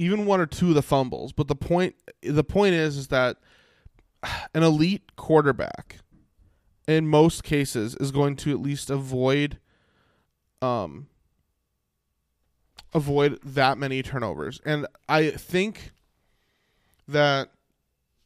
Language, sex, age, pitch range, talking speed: English, male, 20-39, 130-155 Hz, 120 wpm